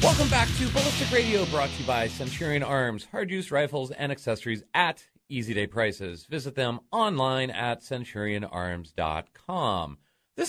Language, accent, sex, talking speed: English, American, male, 150 wpm